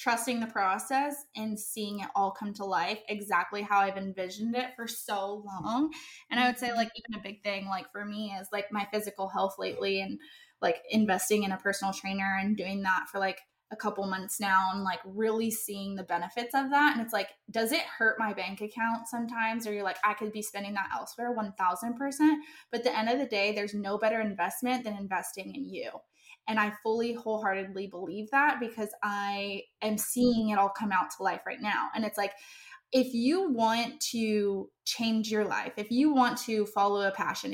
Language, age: English, 20-39